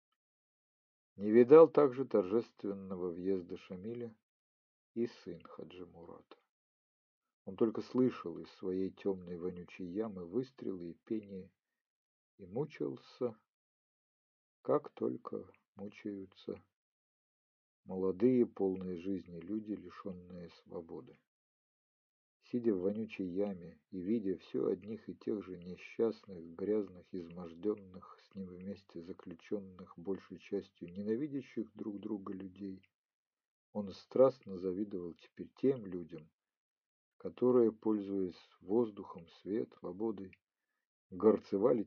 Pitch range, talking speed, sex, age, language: 90-110 Hz, 95 wpm, male, 50-69, Ukrainian